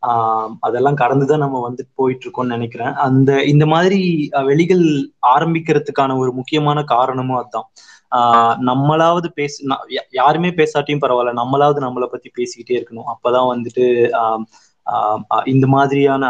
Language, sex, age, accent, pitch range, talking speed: Tamil, male, 20-39, native, 120-145 Hz, 125 wpm